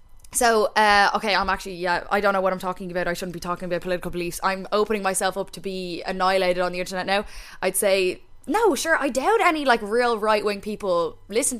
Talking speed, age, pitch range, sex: 220 wpm, 10-29, 195-240 Hz, female